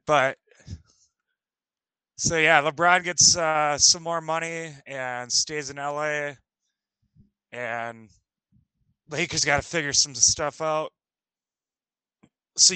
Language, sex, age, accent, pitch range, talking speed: English, male, 20-39, American, 125-165 Hz, 105 wpm